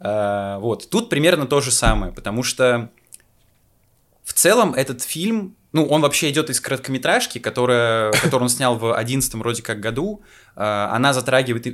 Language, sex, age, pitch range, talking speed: Russian, male, 20-39, 110-140 Hz, 150 wpm